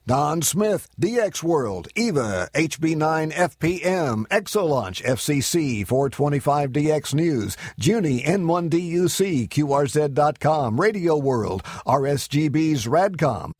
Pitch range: 130-170 Hz